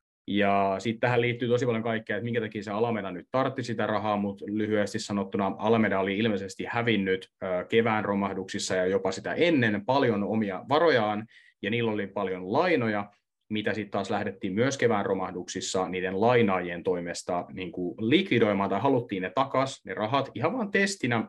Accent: native